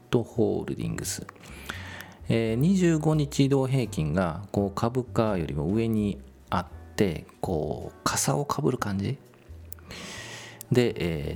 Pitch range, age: 85-125 Hz, 40-59